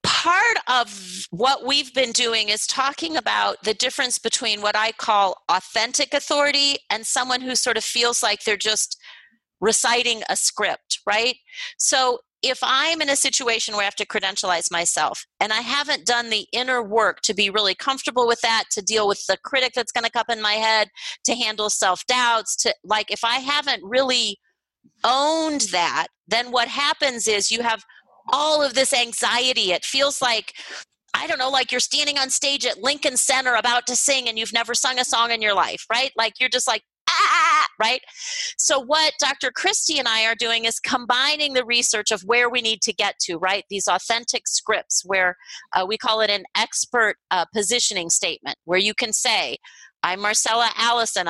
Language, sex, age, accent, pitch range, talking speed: English, female, 40-59, American, 215-260 Hz, 190 wpm